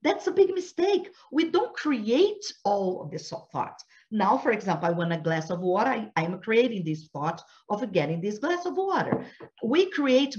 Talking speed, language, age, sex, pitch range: 185 wpm, English, 50-69, female, 150-230 Hz